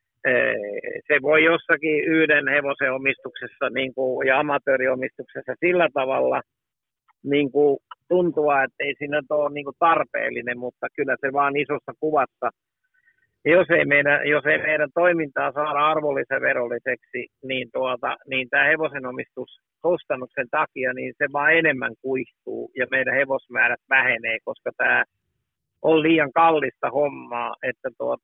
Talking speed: 125 wpm